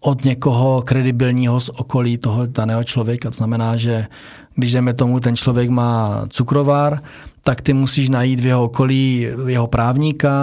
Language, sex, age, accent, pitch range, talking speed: Czech, male, 40-59, native, 120-135 Hz, 155 wpm